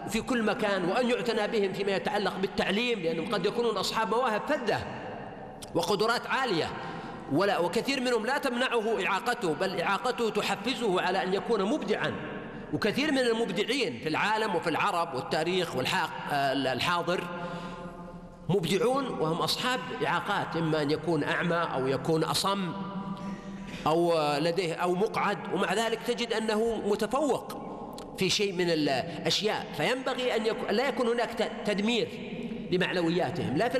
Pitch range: 170-225 Hz